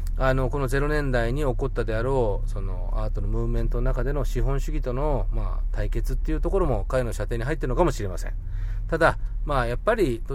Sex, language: male, Japanese